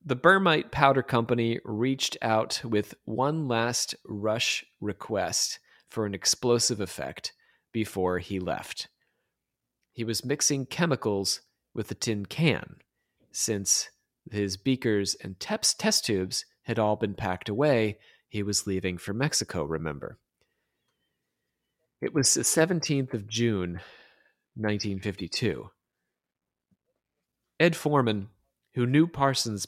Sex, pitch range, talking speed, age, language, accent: male, 100-125 Hz, 115 wpm, 30-49, English, American